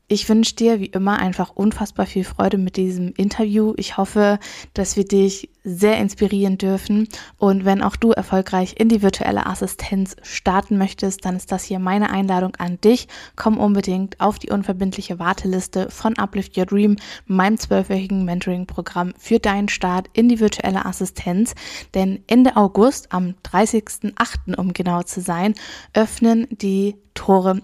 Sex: female